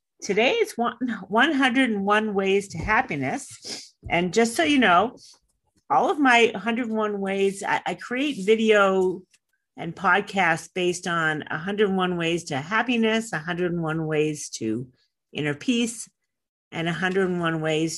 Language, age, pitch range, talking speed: English, 40-59, 160-220 Hz, 120 wpm